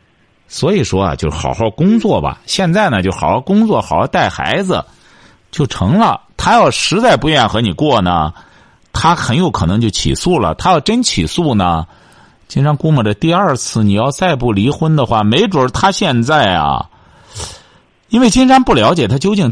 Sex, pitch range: male, 95-165 Hz